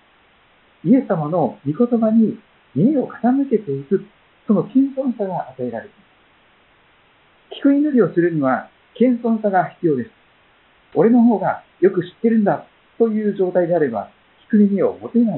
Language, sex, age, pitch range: Japanese, male, 50-69, 165-230 Hz